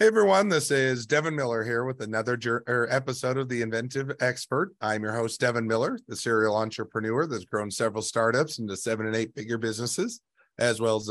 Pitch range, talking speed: 105-120 Hz, 185 wpm